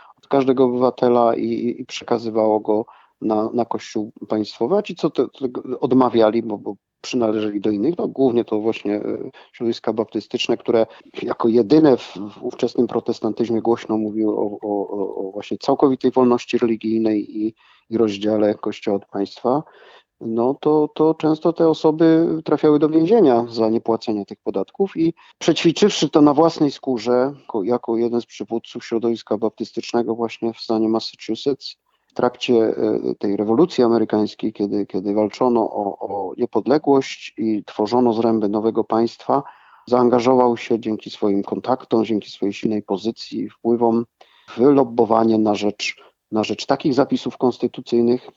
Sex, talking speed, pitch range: male, 140 wpm, 110-130 Hz